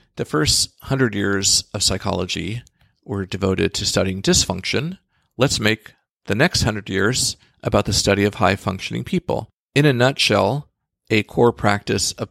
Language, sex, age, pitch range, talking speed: English, male, 40-59, 95-120 Hz, 145 wpm